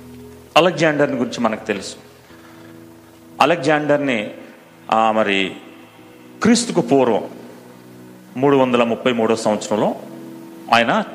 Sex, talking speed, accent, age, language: male, 75 wpm, native, 40-59, Telugu